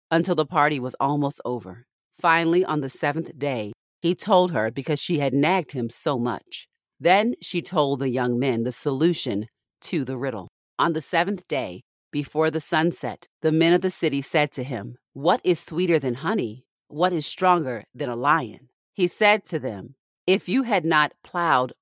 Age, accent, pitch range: 40-59, American, 130-170 Hz